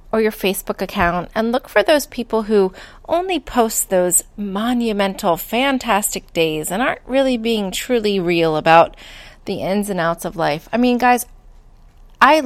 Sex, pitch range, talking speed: female, 185-240 Hz, 160 wpm